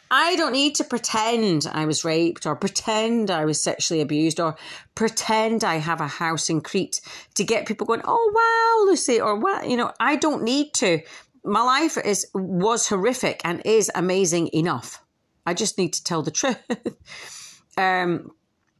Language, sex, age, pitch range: English, female, 40-59, 150-210 Hz